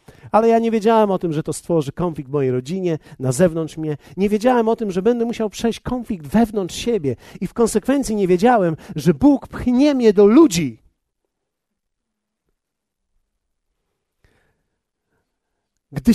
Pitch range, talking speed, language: 145-230 Hz, 145 wpm, Polish